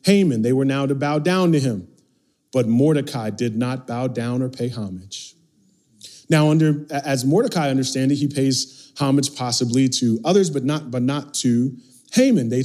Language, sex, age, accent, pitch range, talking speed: English, male, 30-49, American, 135-180 Hz, 175 wpm